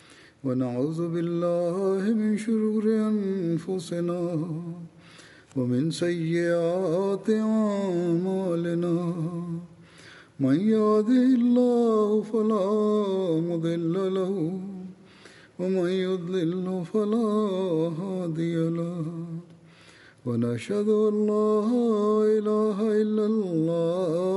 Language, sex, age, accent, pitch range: Malayalam, male, 50-69, native, 165-210 Hz